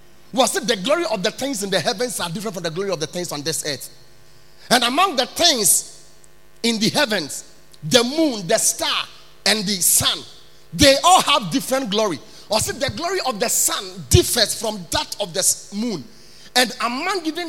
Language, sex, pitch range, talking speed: English, male, 160-240 Hz, 190 wpm